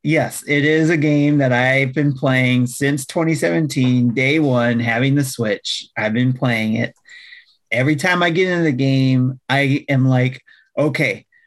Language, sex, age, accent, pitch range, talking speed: English, male, 30-49, American, 125-150 Hz, 160 wpm